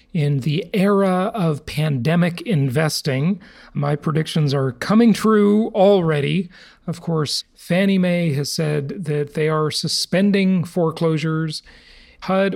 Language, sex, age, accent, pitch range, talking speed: English, male, 40-59, American, 145-185 Hz, 115 wpm